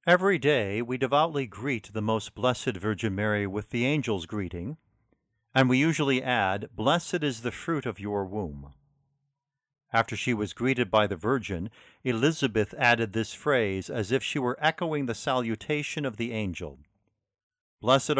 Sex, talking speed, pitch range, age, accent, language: male, 155 wpm, 110-140 Hz, 50-69, American, English